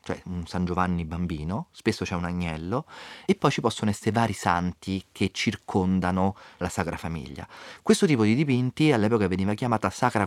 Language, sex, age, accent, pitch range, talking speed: Italian, male, 30-49, native, 85-105 Hz, 170 wpm